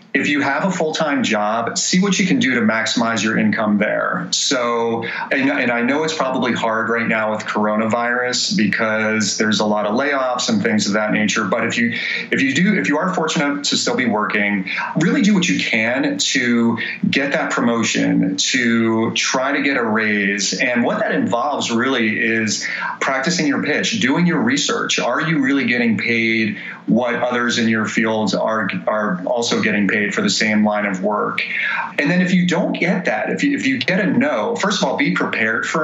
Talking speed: 205 wpm